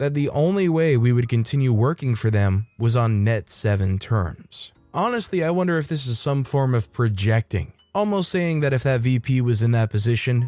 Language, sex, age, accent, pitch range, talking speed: English, male, 20-39, American, 110-135 Hz, 200 wpm